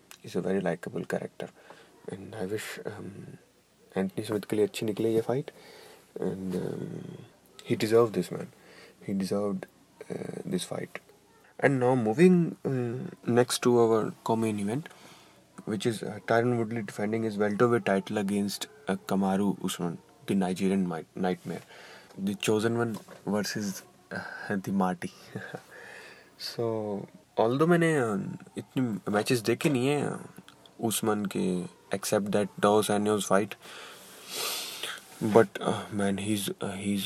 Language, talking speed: Hindi, 110 wpm